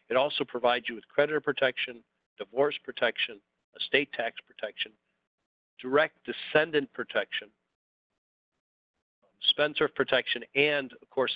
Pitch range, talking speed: 120-145 Hz, 105 wpm